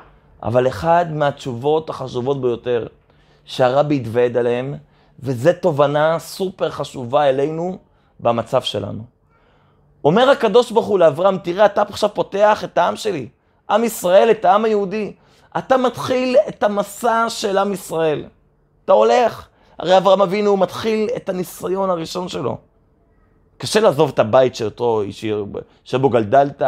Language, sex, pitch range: Hebrew, male, 140-200 Hz